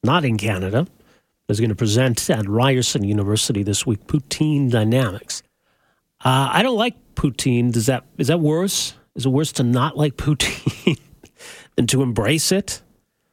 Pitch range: 115-155 Hz